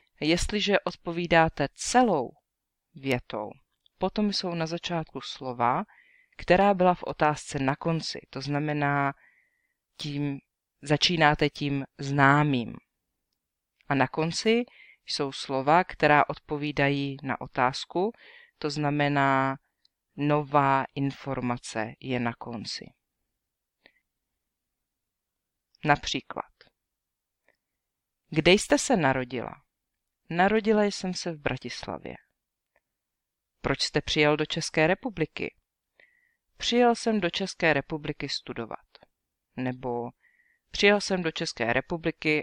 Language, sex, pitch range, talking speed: English, female, 135-190 Hz, 90 wpm